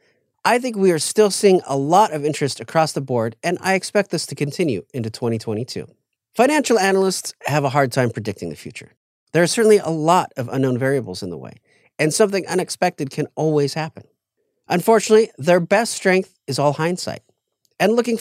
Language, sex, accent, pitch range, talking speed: English, male, American, 145-200 Hz, 185 wpm